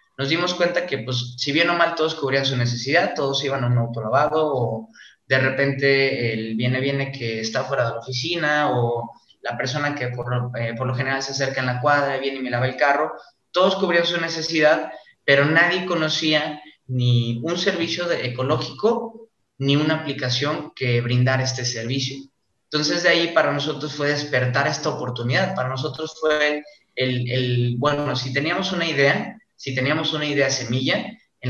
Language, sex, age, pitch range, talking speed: Spanish, male, 20-39, 125-150 Hz, 180 wpm